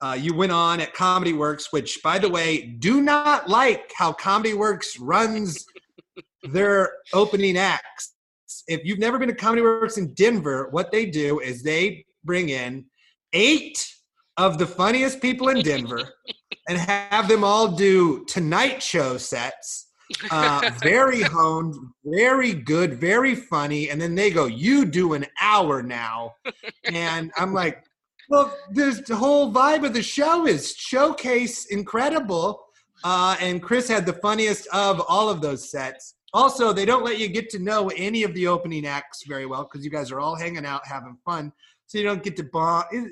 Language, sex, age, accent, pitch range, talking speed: English, male, 30-49, American, 165-225 Hz, 170 wpm